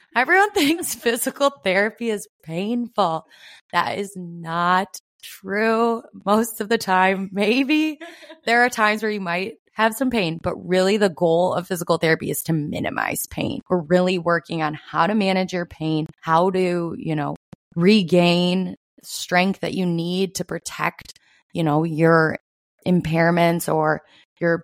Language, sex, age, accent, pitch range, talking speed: English, female, 20-39, American, 165-195 Hz, 150 wpm